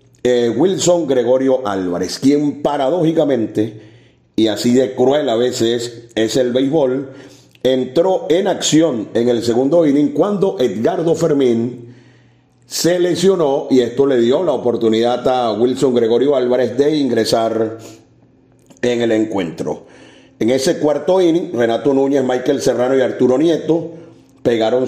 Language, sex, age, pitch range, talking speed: Spanish, male, 40-59, 120-150 Hz, 130 wpm